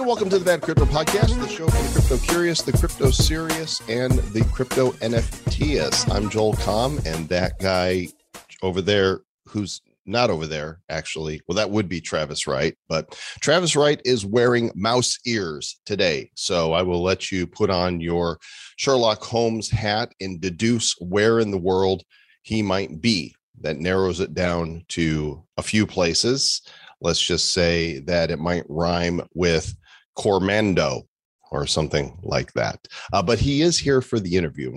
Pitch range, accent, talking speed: 85-115 Hz, American, 165 wpm